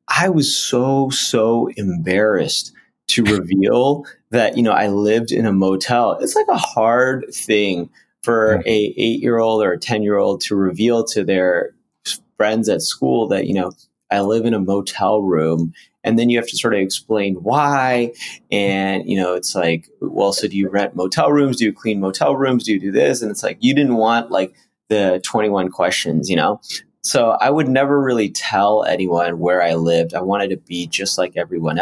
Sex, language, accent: male, English, American